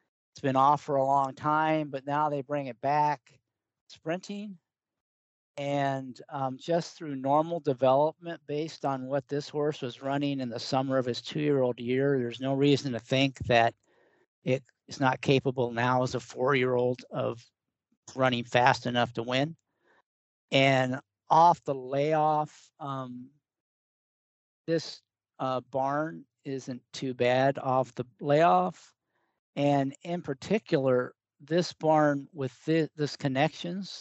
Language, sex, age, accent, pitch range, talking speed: English, male, 50-69, American, 125-150 Hz, 135 wpm